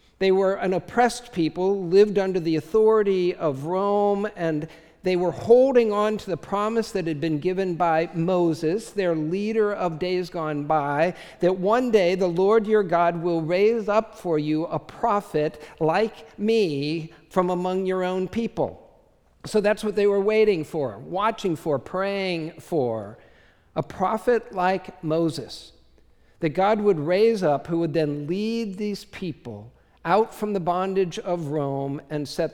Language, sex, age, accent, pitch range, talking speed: English, male, 50-69, American, 160-210 Hz, 160 wpm